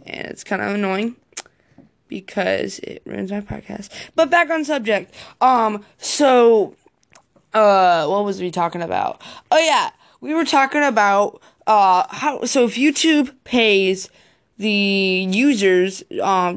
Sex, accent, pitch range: female, American, 195-245 Hz